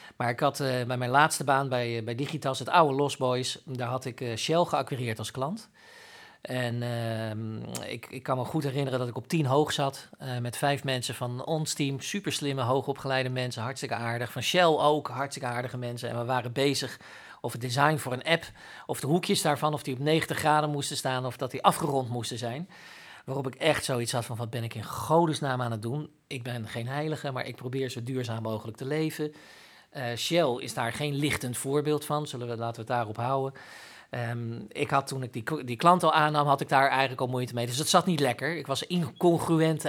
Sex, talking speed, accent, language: male, 225 wpm, Dutch, Dutch